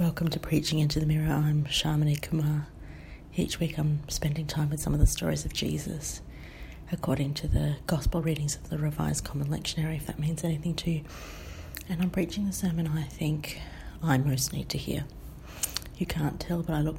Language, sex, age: English, female, 30-49